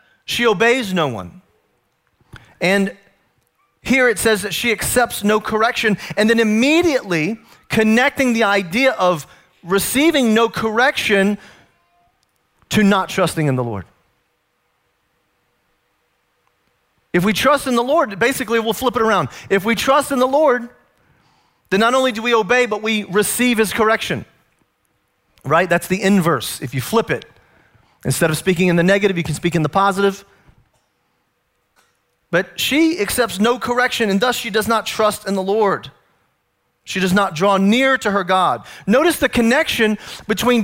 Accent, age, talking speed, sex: American, 40-59, 150 wpm, male